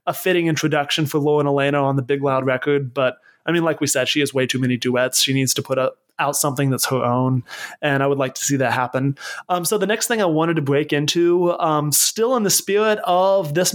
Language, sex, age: English, male, 20-39